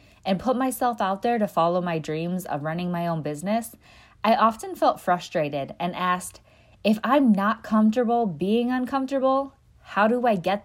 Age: 20-39